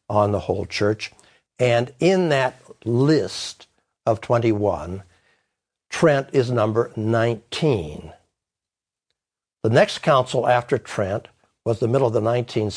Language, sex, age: English, male, 60-79